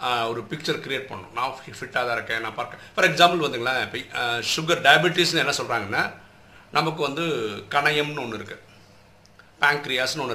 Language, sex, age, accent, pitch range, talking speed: Tamil, male, 50-69, native, 130-185 Hz, 135 wpm